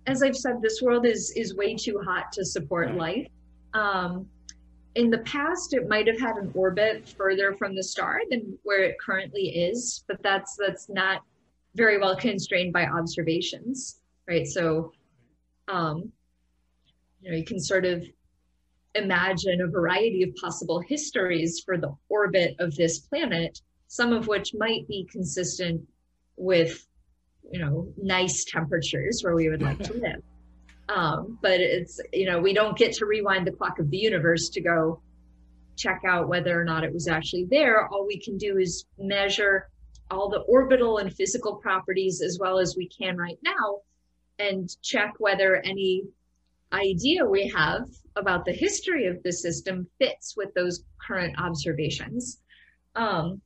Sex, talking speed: female, 160 wpm